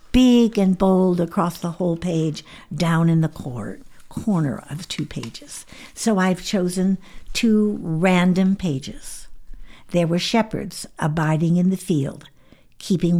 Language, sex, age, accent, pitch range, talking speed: English, female, 60-79, American, 140-190 Hz, 130 wpm